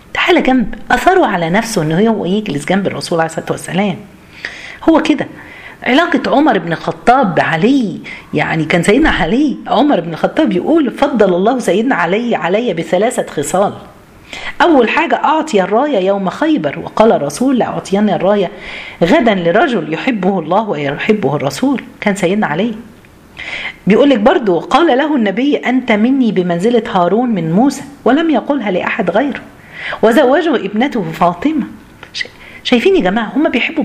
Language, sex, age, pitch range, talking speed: Arabic, female, 50-69, 180-255 Hz, 135 wpm